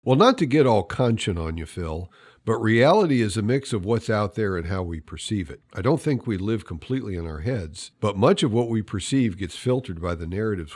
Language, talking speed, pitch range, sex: English, 240 wpm, 90-120 Hz, male